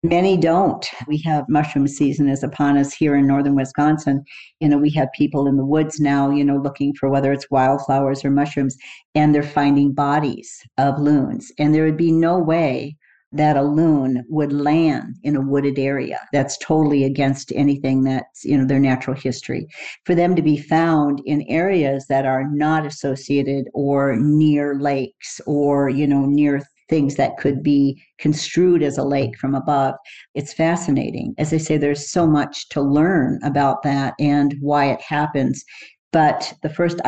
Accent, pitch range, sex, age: American, 140-150 Hz, female, 50-69